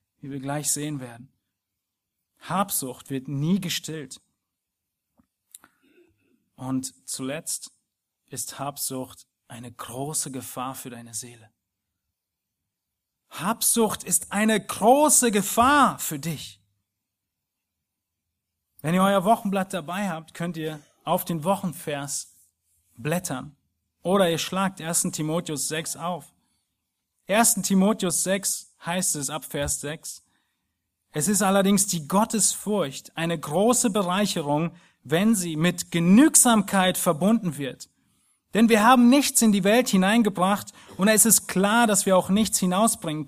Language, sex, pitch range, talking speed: German, male, 140-200 Hz, 115 wpm